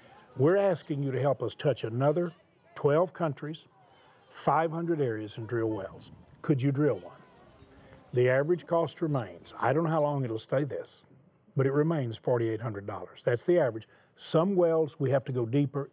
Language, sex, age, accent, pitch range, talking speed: English, male, 50-69, American, 125-160 Hz, 170 wpm